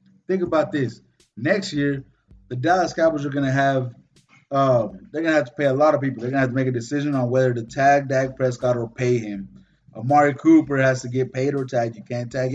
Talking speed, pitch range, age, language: 230 wpm, 130-150 Hz, 20-39, English